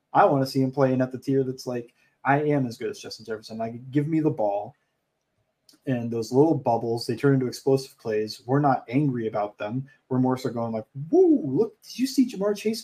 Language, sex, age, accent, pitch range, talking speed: English, male, 20-39, American, 120-150 Hz, 230 wpm